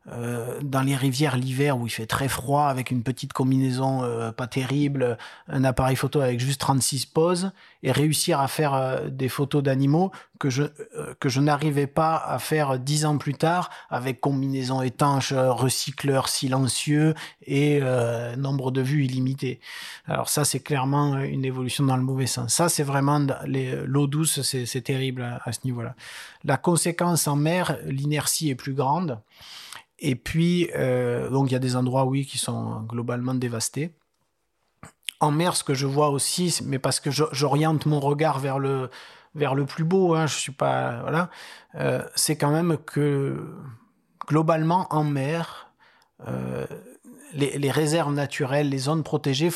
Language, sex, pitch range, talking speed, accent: French, male, 130-150 Hz, 170 wpm, French